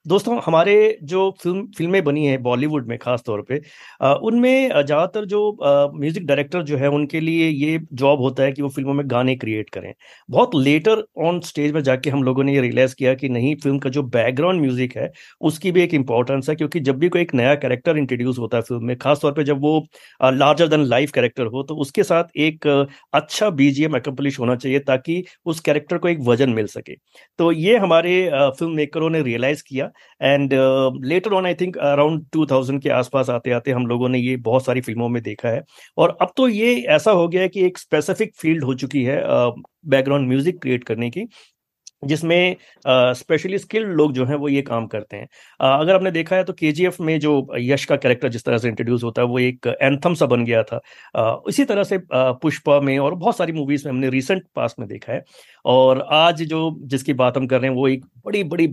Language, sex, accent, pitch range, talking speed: Hindi, male, native, 130-165 Hz, 215 wpm